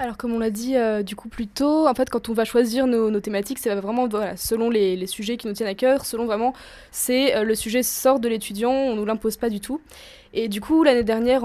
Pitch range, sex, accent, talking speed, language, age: 210-235 Hz, female, French, 280 wpm, French, 20-39